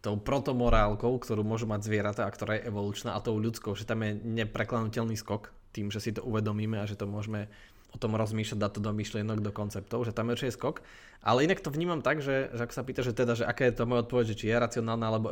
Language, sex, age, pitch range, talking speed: Slovak, male, 20-39, 105-120 Hz, 250 wpm